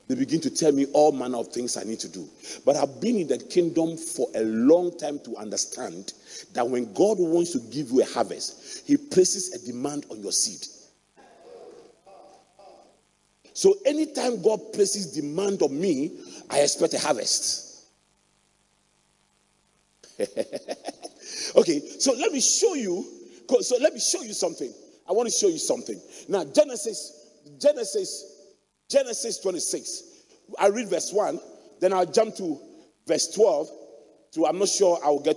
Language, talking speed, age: English, 160 wpm, 40-59